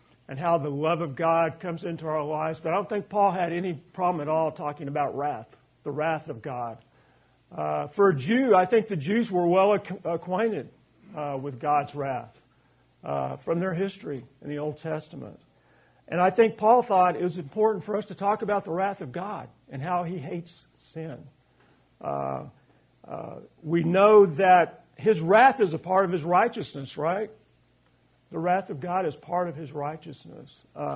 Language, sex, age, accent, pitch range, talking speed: English, male, 50-69, American, 145-185 Hz, 185 wpm